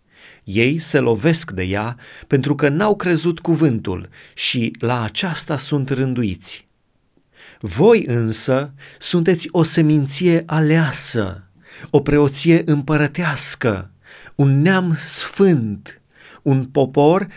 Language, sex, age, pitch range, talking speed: Romanian, male, 30-49, 120-160 Hz, 100 wpm